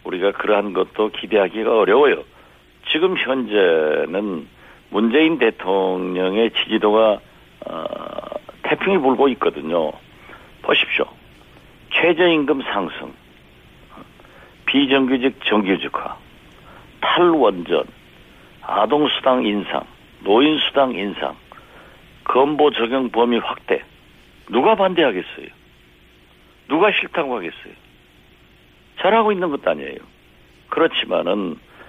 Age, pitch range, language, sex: 60-79, 95-140 Hz, Korean, male